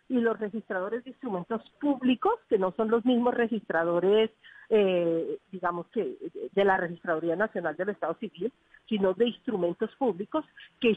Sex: female